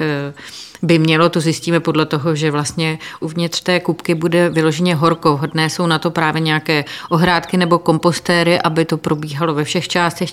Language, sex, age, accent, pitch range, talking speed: Czech, female, 30-49, native, 155-170 Hz, 170 wpm